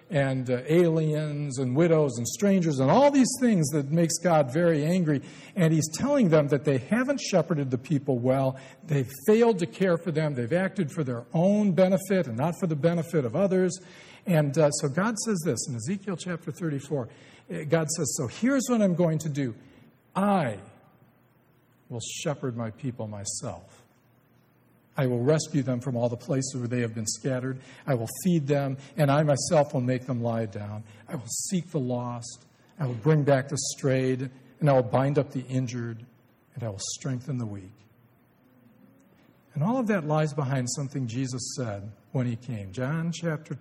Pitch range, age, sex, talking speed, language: 120-160 Hz, 50-69, male, 185 wpm, English